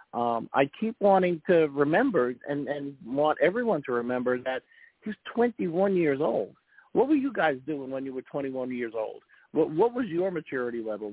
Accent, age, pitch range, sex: American, 50-69, 140-195 Hz, male